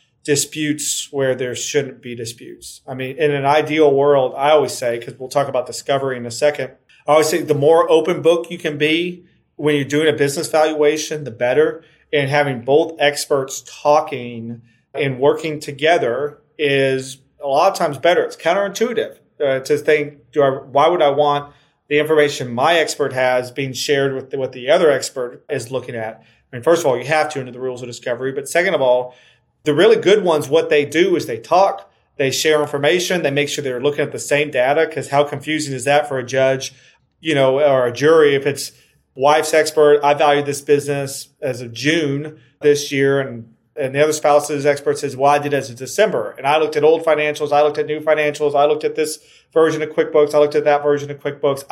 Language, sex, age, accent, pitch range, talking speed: English, male, 30-49, American, 135-155 Hz, 215 wpm